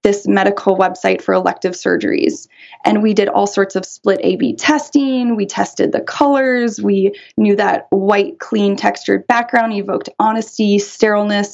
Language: English